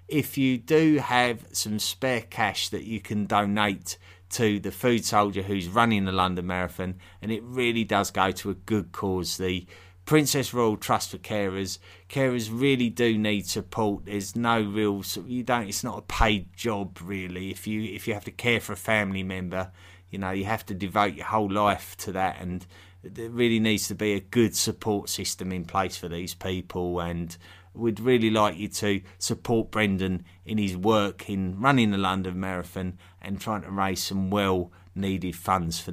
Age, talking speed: 30-49, 185 wpm